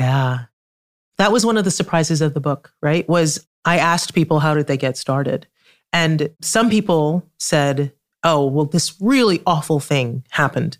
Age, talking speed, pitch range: 30-49, 170 wpm, 145-185 Hz